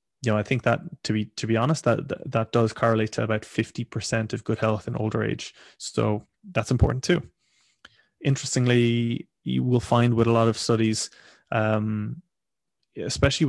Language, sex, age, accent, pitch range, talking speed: English, male, 20-39, Irish, 110-125 Hz, 170 wpm